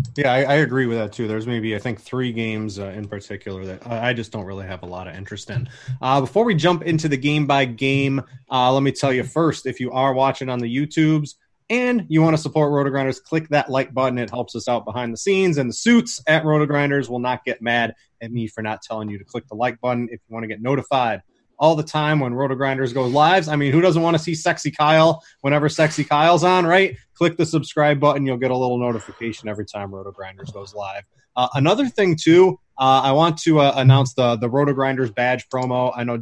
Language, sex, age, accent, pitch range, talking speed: English, male, 20-39, American, 125-155 Hz, 240 wpm